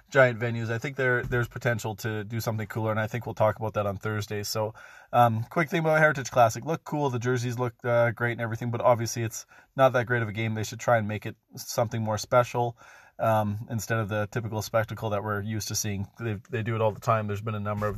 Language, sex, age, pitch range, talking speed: English, male, 30-49, 110-130 Hz, 260 wpm